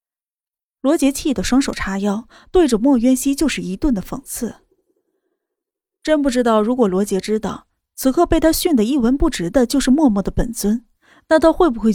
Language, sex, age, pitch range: Chinese, female, 20-39, 210-275 Hz